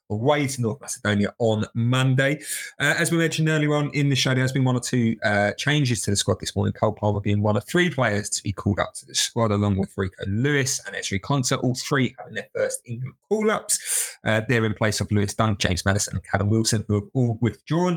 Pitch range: 105-135 Hz